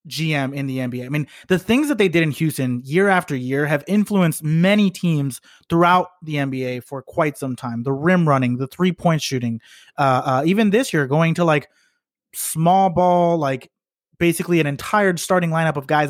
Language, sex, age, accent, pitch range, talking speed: English, male, 30-49, American, 140-185 Hz, 190 wpm